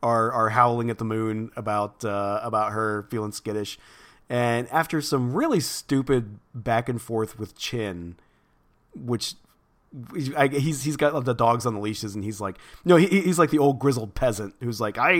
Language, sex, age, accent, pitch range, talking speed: English, male, 30-49, American, 105-130 Hz, 190 wpm